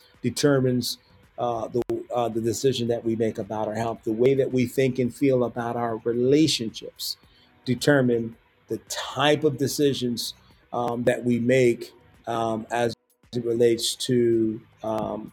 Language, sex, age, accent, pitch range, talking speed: English, male, 40-59, American, 110-130 Hz, 145 wpm